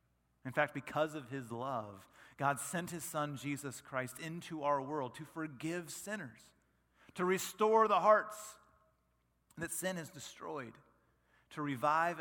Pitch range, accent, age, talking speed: 115-165 Hz, American, 40-59, 140 wpm